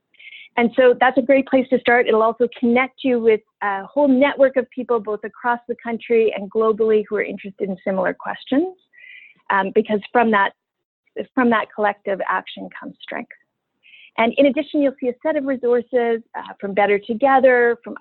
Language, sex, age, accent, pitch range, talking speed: English, female, 30-49, American, 210-265 Hz, 180 wpm